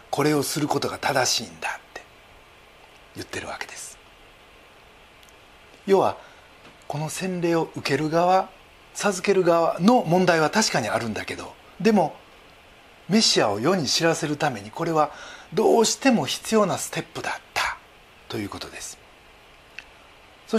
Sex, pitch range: male, 130-205 Hz